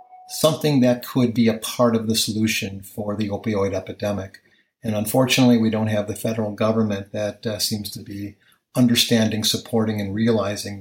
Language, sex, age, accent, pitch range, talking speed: English, male, 50-69, American, 105-125 Hz, 165 wpm